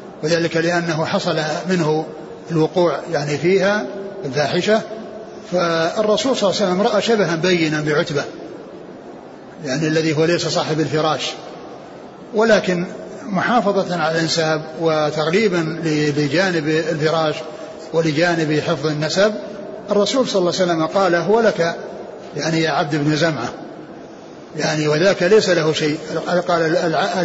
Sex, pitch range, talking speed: male, 160-185 Hz, 115 wpm